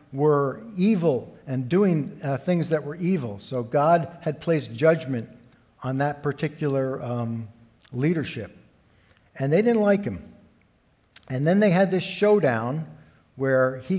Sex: male